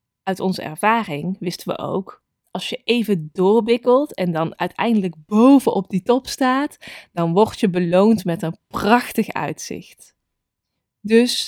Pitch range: 185-230 Hz